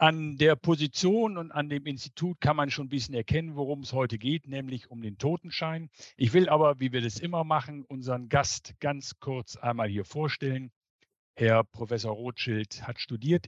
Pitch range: 115-145 Hz